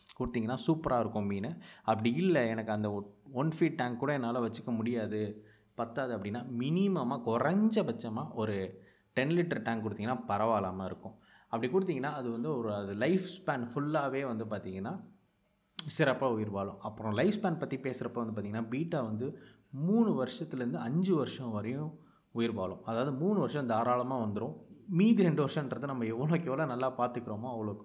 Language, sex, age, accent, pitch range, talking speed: Tamil, male, 20-39, native, 110-150 Hz, 150 wpm